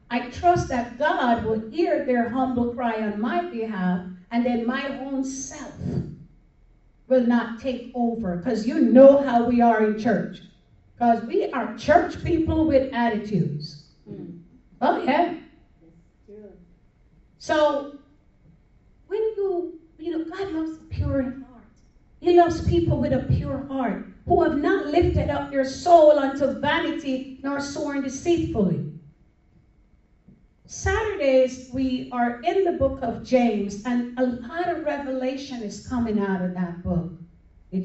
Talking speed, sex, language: 135 wpm, female, English